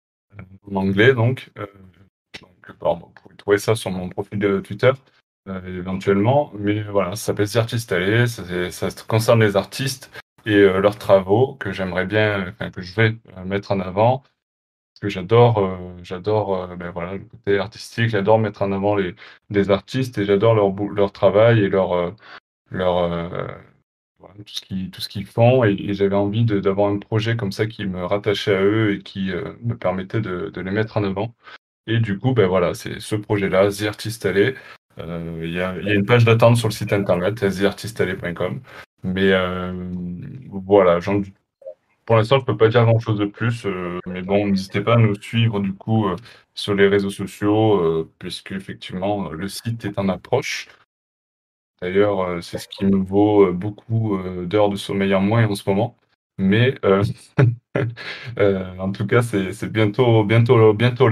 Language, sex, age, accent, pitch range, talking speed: French, male, 20-39, French, 95-110 Hz, 185 wpm